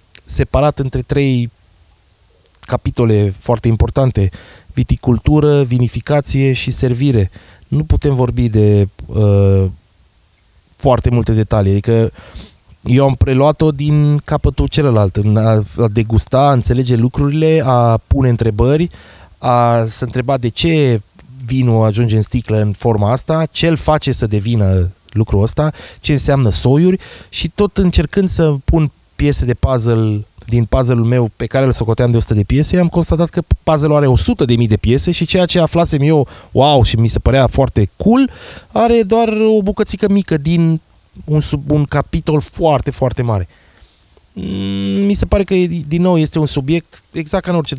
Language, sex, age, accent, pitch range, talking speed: Romanian, male, 20-39, native, 110-150 Hz, 150 wpm